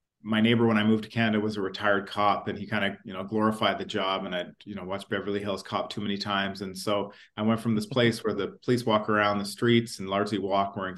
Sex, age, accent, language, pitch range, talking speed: male, 40-59, American, English, 100-115 Hz, 270 wpm